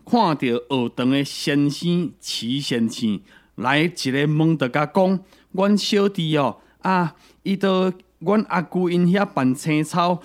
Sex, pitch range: male, 125-180 Hz